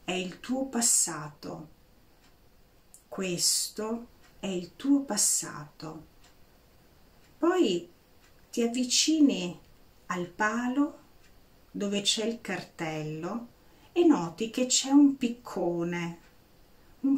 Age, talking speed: 40-59, 85 wpm